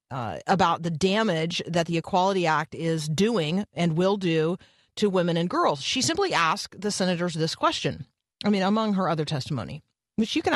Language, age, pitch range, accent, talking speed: English, 40-59, 155-220 Hz, American, 190 wpm